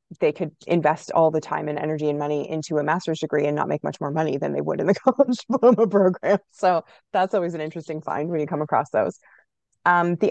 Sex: female